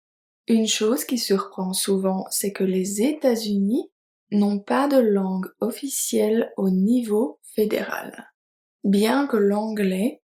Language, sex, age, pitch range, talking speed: French, female, 20-39, 195-230 Hz, 115 wpm